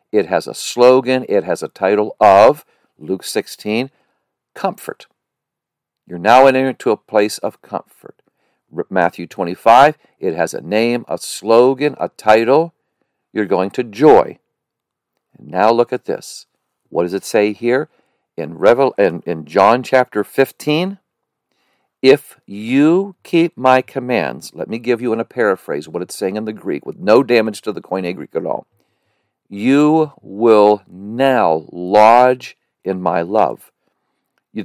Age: 50-69